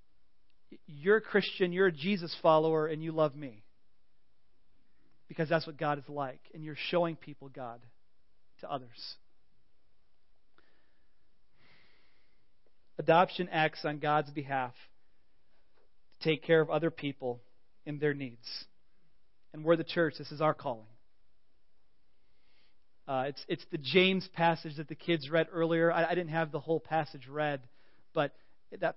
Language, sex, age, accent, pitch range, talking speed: English, male, 40-59, American, 135-175 Hz, 140 wpm